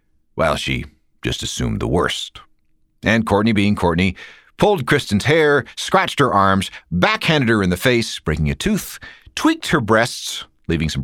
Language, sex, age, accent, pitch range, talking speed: English, male, 40-59, American, 95-135 Hz, 165 wpm